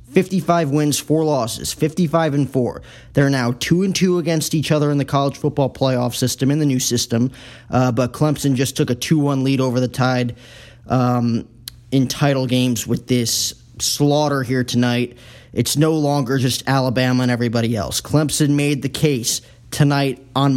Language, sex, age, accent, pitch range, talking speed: English, male, 20-39, American, 125-145 Hz, 175 wpm